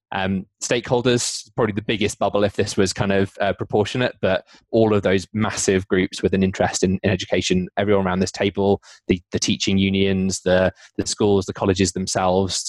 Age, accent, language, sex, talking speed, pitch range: 20-39, British, English, male, 185 wpm, 95-105 Hz